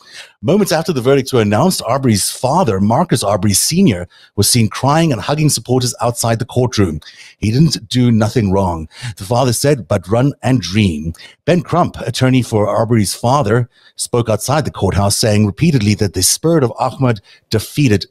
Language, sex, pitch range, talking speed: English, male, 105-140 Hz, 165 wpm